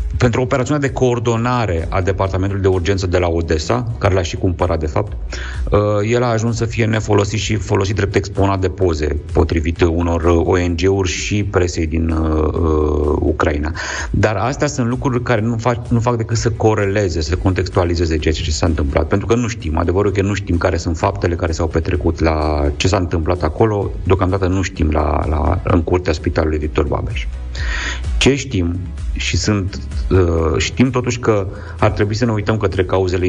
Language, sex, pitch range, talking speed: Romanian, male, 85-105 Hz, 175 wpm